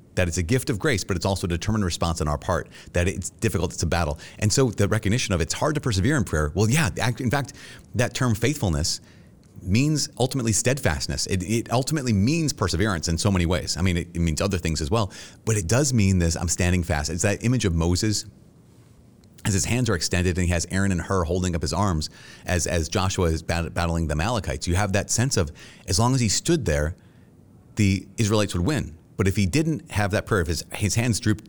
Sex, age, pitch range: male, 30-49, 85-110 Hz